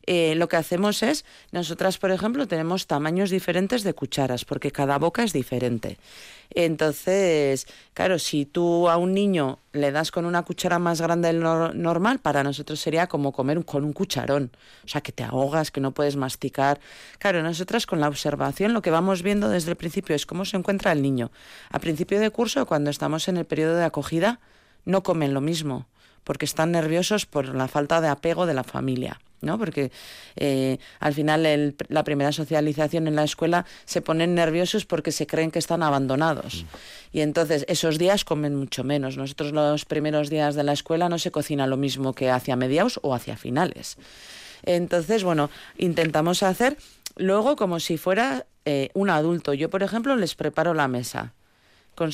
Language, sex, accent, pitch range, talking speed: Spanish, female, Spanish, 145-175 Hz, 185 wpm